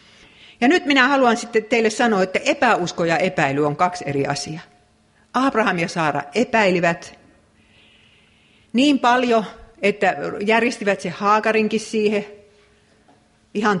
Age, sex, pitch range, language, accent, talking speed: 50-69, female, 170-225 Hz, Finnish, native, 115 wpm